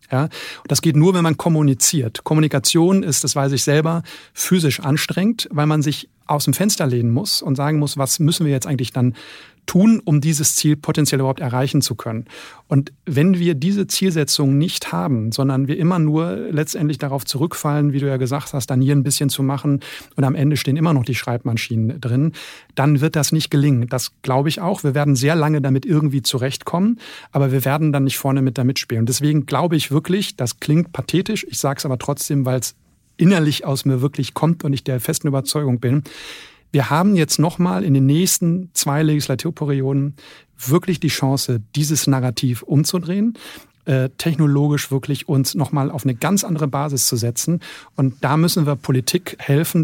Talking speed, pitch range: 190 wpm, 135-160 Hz